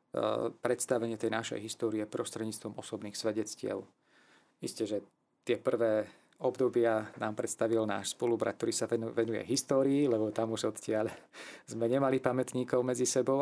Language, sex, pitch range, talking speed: Slovak, male, 110-125 Hz, 130 wpm